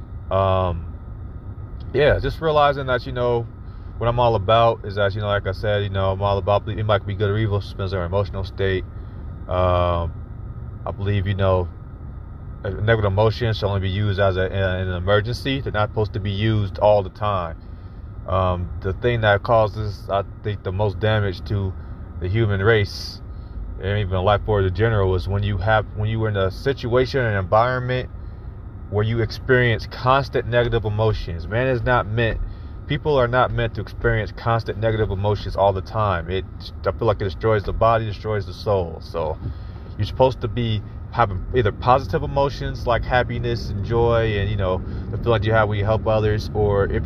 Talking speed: 195 wpm